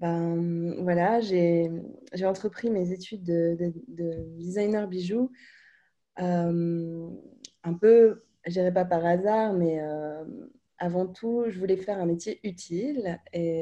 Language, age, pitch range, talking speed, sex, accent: French, 20-39, 165-205 Hz, 135 wpm, female, French